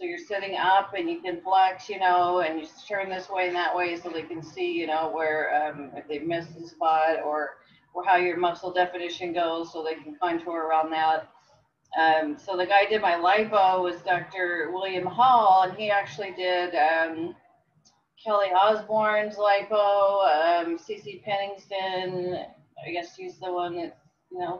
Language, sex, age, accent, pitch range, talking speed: English, female, 40-59, American, 165-210 Hz, 180 wpm